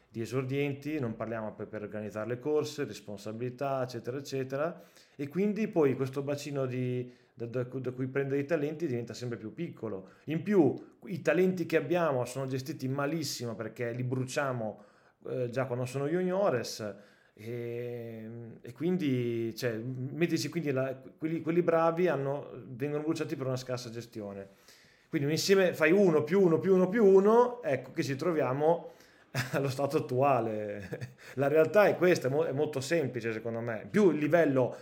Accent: native